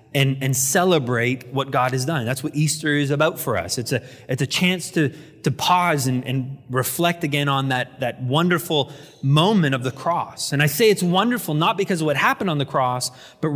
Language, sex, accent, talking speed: English, male, American, 215 wpm